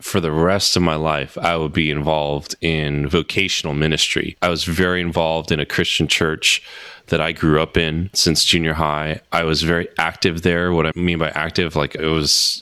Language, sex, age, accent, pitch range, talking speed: English, male, 30-49, American, 80-100 Hz, 200 wpm